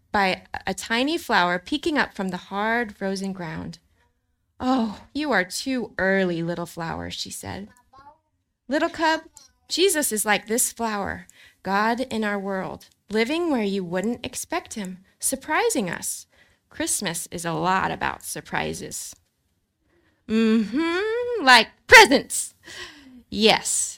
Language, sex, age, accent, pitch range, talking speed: English, female, 20-39, American, 175-250 Hz, 125 wpm